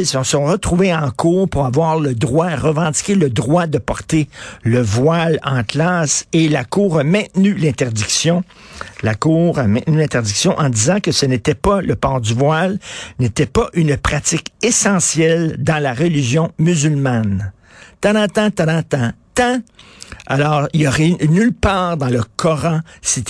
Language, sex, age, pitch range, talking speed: French, male, 50-69, 130-170 Hz, 155 wpm